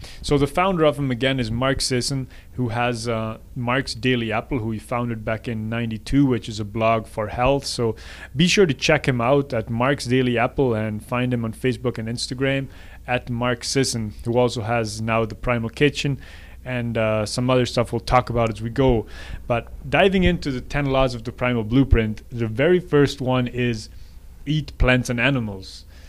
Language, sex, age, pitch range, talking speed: English, male, 20-39, 115-130 Hz, 195 wpm